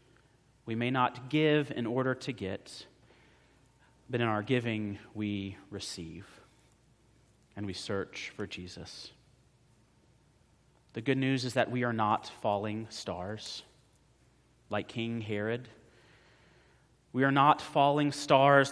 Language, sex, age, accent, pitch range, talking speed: English, male, 30-49, American, 105-130 Hz, 120 wpm